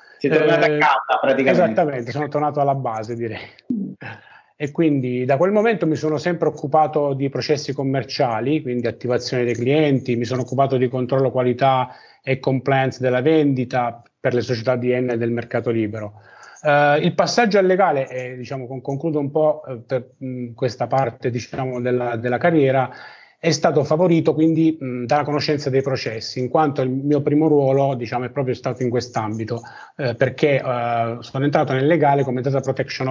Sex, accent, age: male, native, 30-49